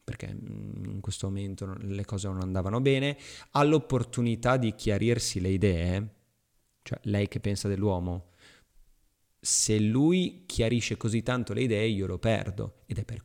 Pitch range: 100-130 Hz